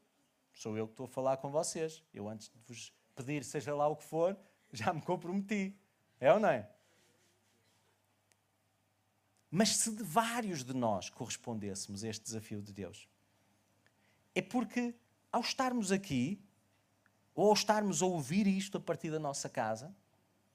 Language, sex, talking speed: Portuguese, male, 155 wpm